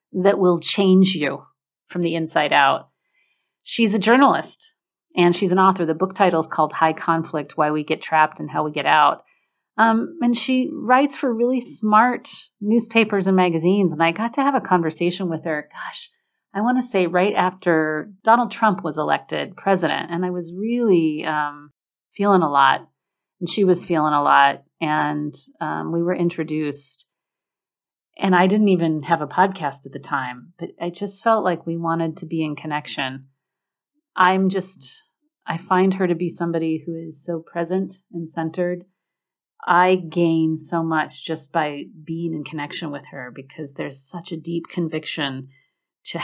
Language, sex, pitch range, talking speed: English, female, 160-195 Hz, 175 wpm